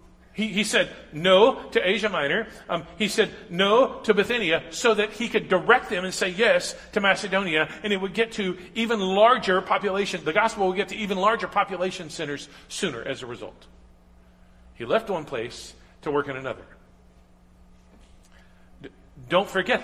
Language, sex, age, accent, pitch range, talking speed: English, male, 40-59, American, 130-205 Hz, 170 wpm